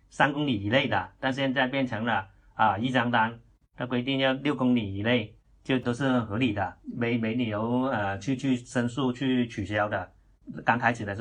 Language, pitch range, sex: Chinese, 105-125 Hz, male